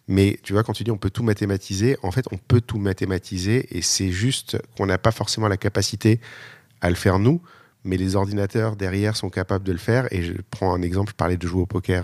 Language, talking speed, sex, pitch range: French, 245 wpm, male, 95-110 Hz